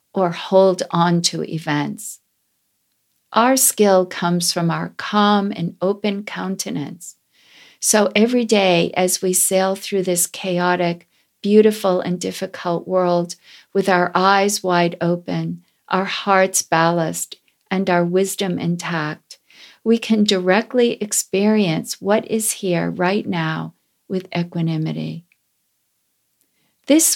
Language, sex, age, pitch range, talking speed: English, female, 50-69, 170-210 Hz, 115 wpm